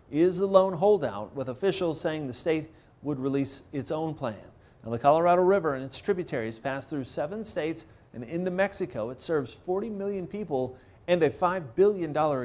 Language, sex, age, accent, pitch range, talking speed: English, male, 30-49, American, 140-195 Hz, 185 wpm